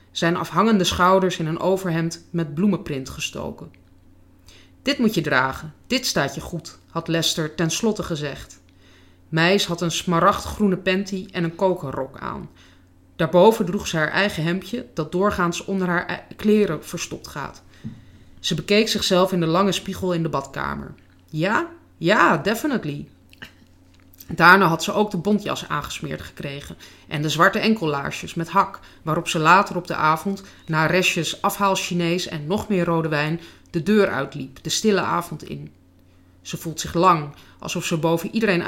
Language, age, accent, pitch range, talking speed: Dutch, 30-49, Dutch, 150-190 Hz, 155 wpm